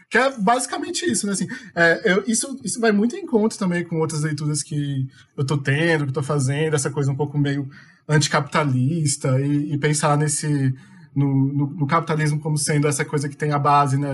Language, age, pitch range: Portuguese, 20-39, 145-175 Hz